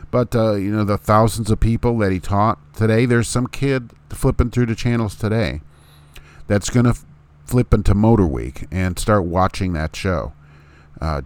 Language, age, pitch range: English, 50-69, 75-110 Hz